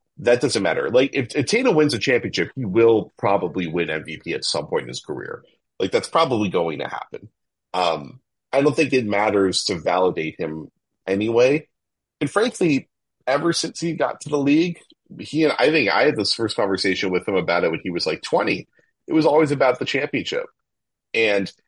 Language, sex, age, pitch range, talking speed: English, male, 30-49, 95-140 Hz, 195 wpm